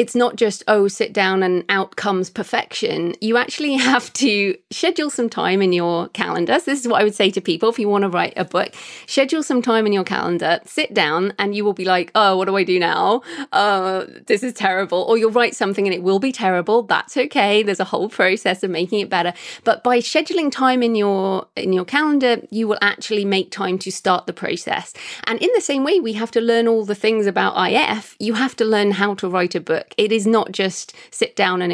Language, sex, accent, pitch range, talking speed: English, female, British, 190-235 Hz, 235 wpm